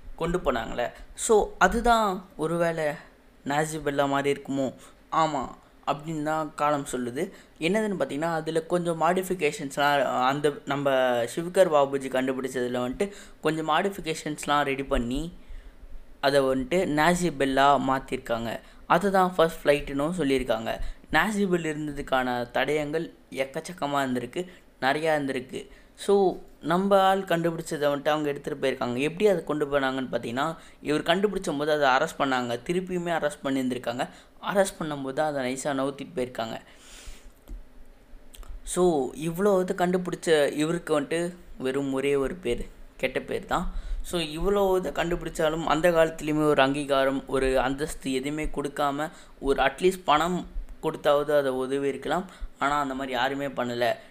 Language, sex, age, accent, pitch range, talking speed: Tamil, female, 20-39, native, 135-170 Hz, 120 wpm